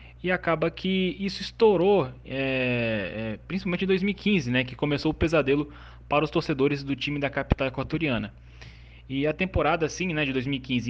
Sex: male